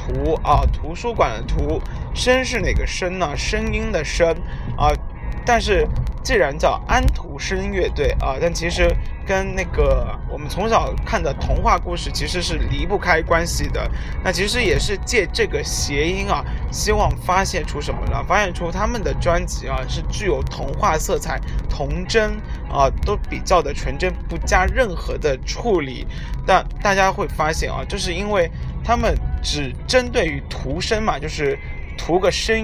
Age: 20-39